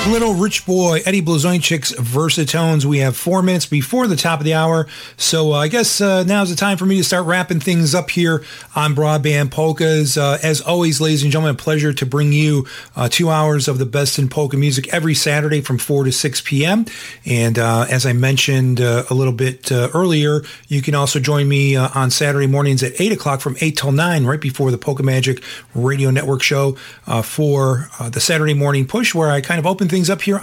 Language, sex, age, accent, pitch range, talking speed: English, male, 40-59, American, 130-165 Hz, 225 wpm